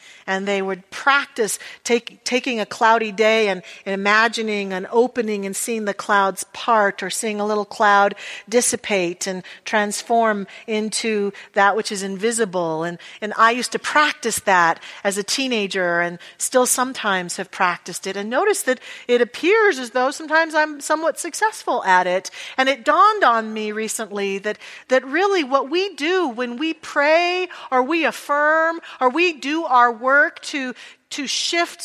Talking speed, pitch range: 165 wpm, 210-275 Hz